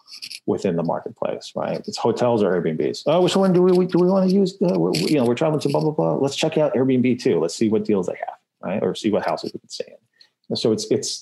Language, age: English, 30-49